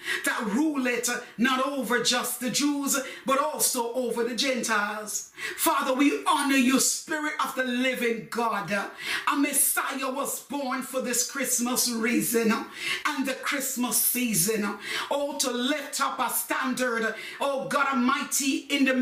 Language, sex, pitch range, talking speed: English, female, 240-295 Hz, 140 wpm